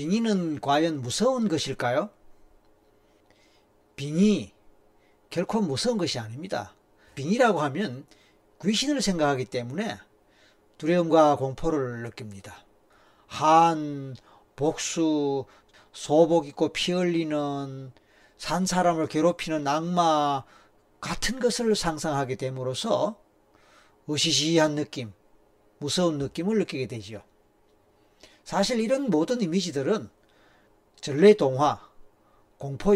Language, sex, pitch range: Korean, male, 105-170 Hz